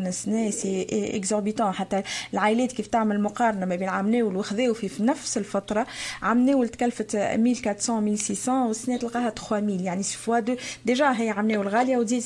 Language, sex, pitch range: Arabic, female, 205-235 Hz